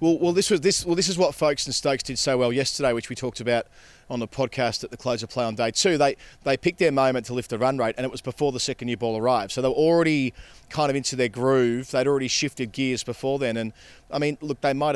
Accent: Australian